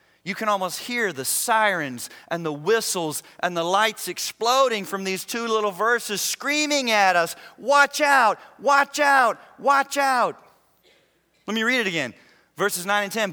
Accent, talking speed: American, 160 wpm